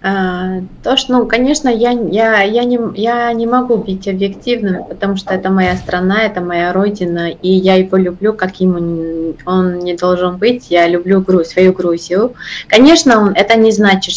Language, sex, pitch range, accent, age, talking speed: Russian, female, 170-205 Hz, native, 20-39, 155 wpm